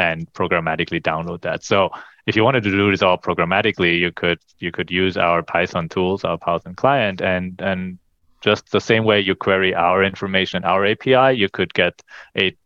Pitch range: 85-95 Hz